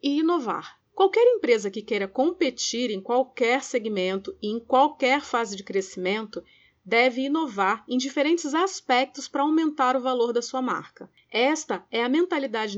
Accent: Brazilian